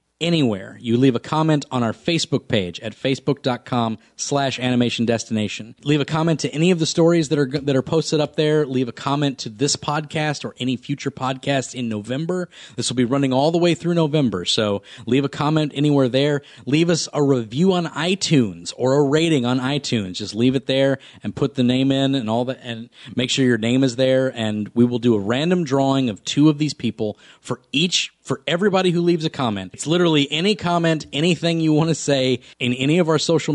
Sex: male